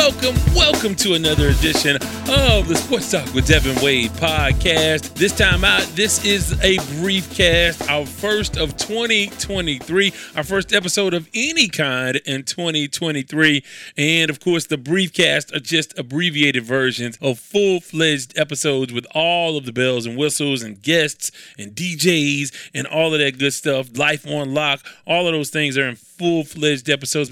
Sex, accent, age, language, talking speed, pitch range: male, American, 30-49, English, 160 wpm, 140-175 Hz